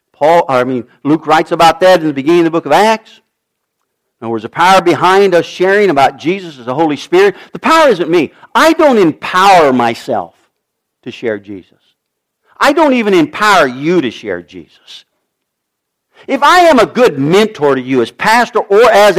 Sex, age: male, 50-69